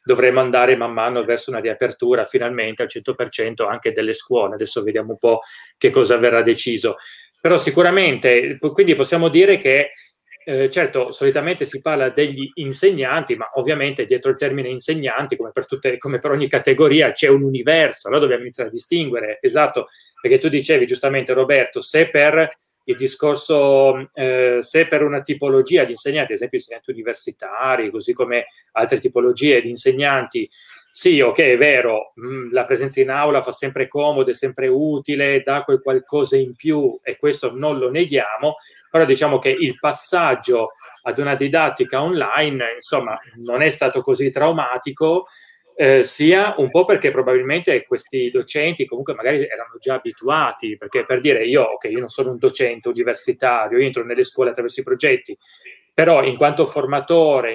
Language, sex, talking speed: Italian, male, 165 wpm